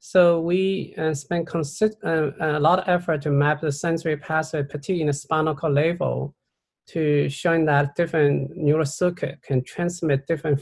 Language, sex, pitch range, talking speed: English, male, 140-170 Hz, 170 wpm